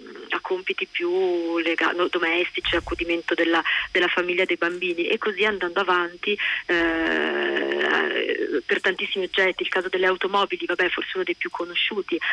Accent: native